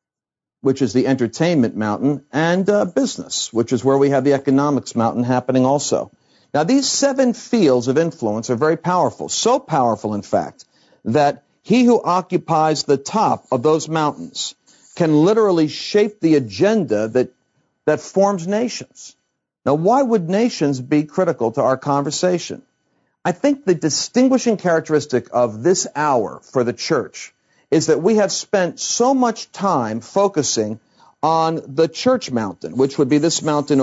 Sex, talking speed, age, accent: male, 155 wpm, 50-69, American